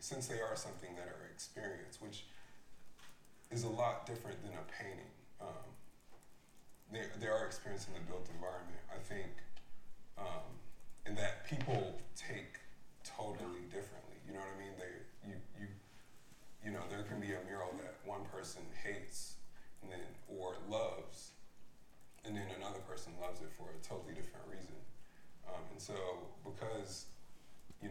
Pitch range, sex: 90-105 Hz, male